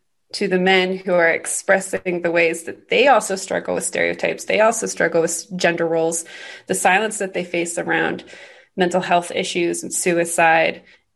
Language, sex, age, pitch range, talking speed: English, female, 20-39, 170-215 Hz, 165 wpm